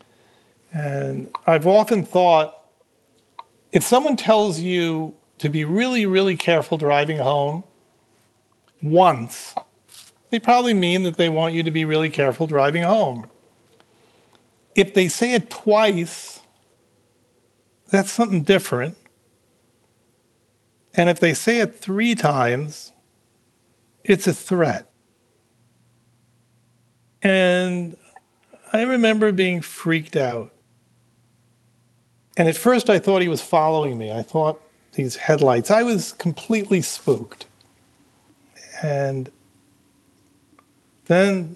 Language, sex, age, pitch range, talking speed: English, male, 50-69, 120-180 Hz, 105 wpm